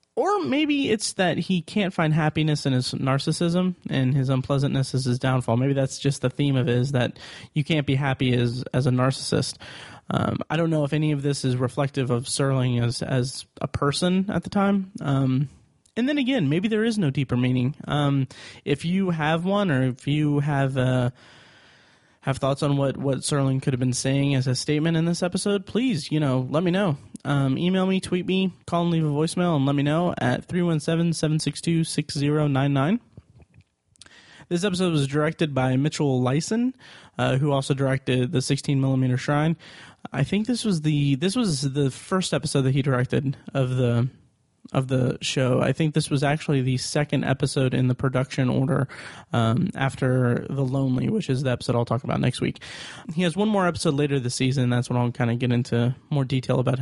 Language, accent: English, American